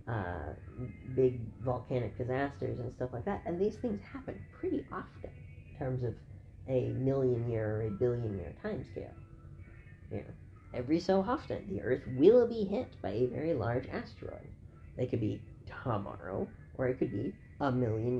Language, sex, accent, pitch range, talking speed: English, female, American, 100-135 Hz, 160 wpm